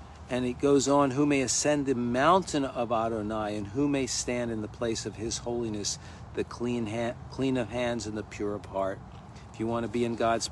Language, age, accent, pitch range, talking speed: English, 50-69, American, 100-130 Hz, 215 wpm